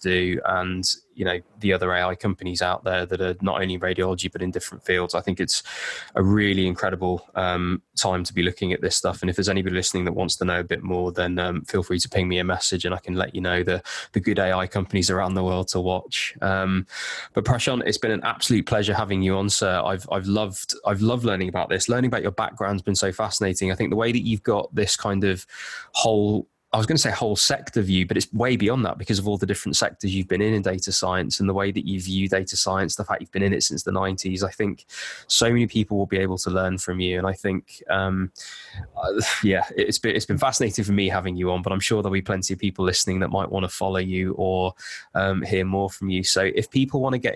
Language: English